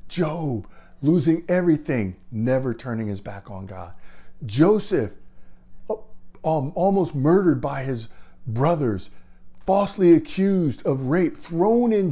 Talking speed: 105 wpm